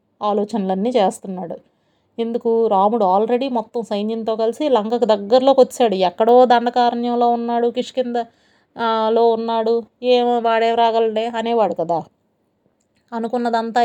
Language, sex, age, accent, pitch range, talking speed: Telugu, female, 30-49, native, 200-235 Hz, 90 wpm